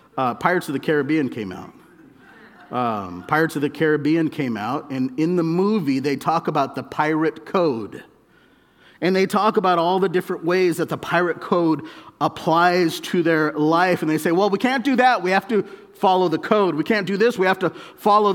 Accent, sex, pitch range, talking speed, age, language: American, male, 165-235 Hz, 205 wpm, 40-59, English